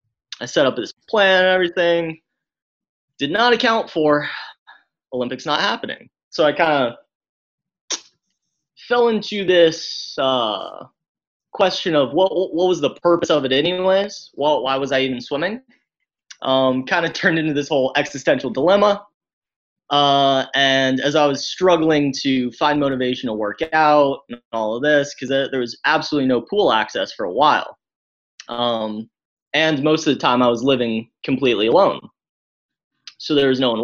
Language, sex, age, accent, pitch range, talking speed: English, male, 20-39, American, 130-180 Hz, 155 wpm